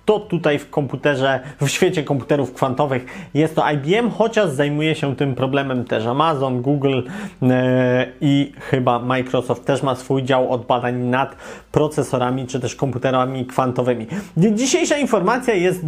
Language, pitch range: Polish, 130-170 Hz